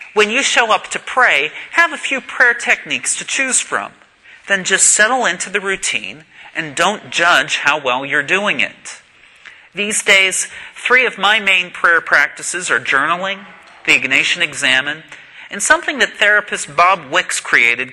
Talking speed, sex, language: 160 wpm, male, English